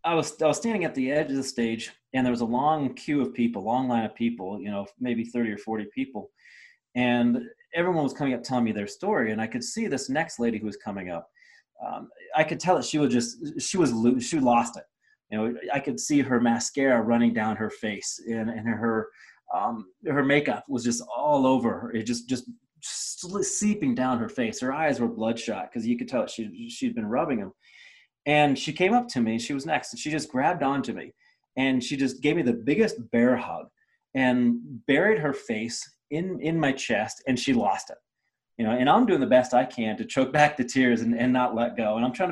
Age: 30-49